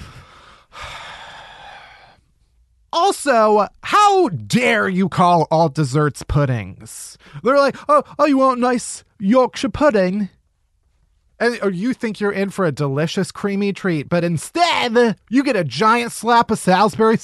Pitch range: 145-230 Hz